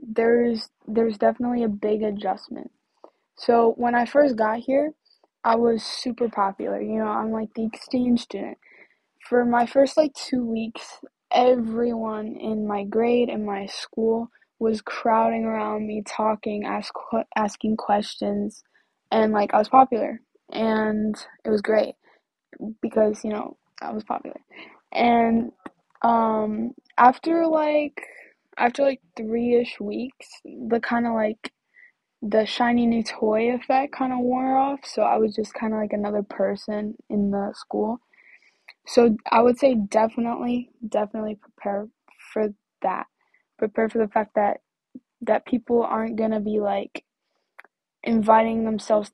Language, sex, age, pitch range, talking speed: English, female, 10-29, 215-245 Hz, 140 wpm